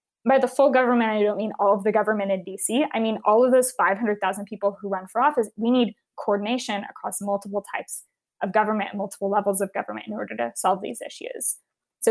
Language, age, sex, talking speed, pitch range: English, 10-29, female, 215 wpm, 200-245 Hz